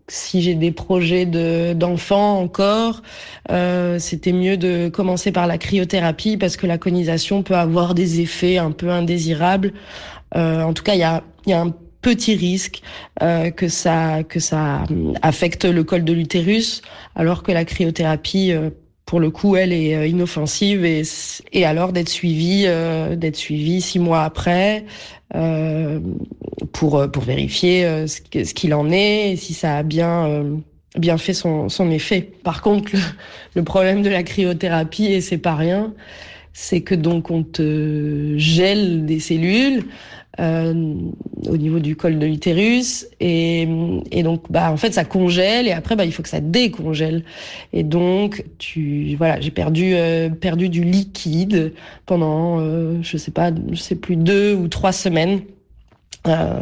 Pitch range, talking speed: 160-185 Hz, 165 wpm